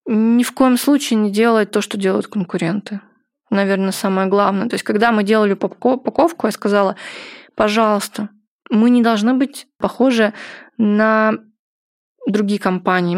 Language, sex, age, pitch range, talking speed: Russian, female, 20-39, 200-235 Hz, 135 wpm